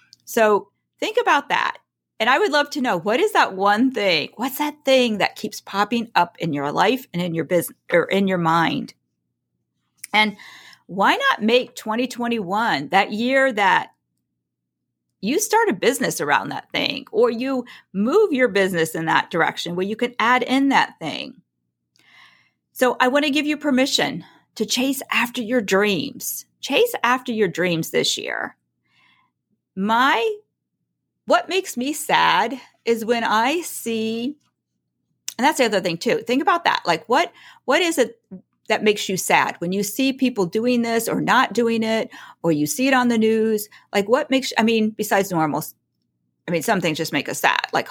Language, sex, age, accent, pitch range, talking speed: English, female, 40-59, American, 185-265 Hz, 175 wpm